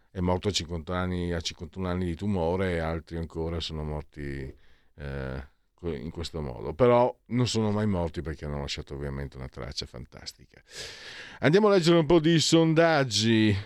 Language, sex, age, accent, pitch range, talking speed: Italian, male, 50-69, native, 90-135 Hz, 165 wpm